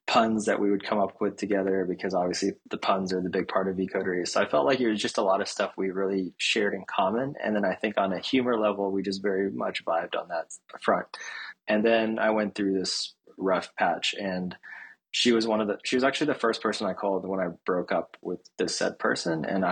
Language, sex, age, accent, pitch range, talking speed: English, male, 20-39, American, 95-110 Hz, 245 wpm